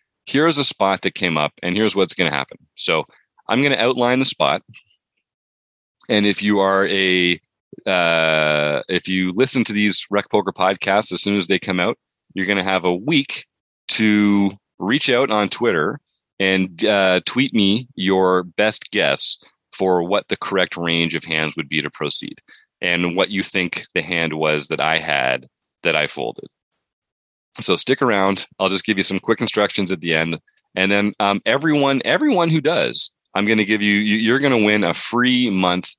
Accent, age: American, 30-49